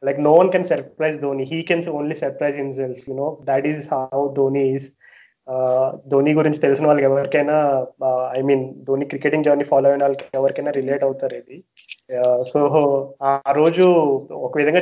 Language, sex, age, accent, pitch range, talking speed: Telugu, male, 20-39, native, 135-155 Hz, 130 wpm